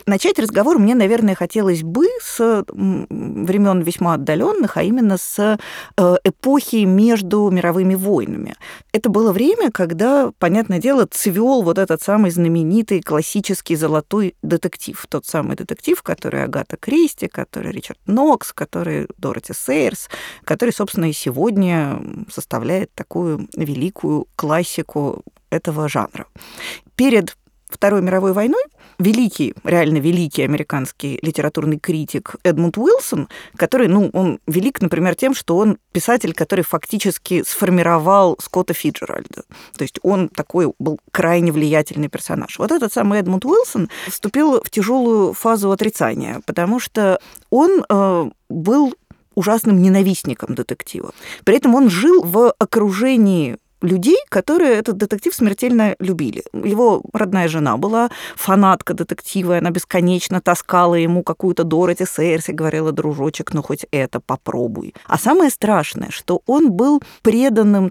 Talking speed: 125 wpm